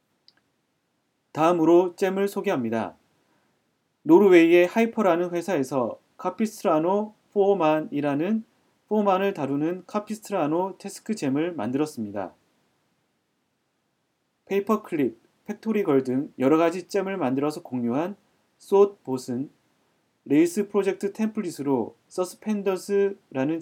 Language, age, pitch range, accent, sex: Korean, 30-49, 150-205 Hz, native, male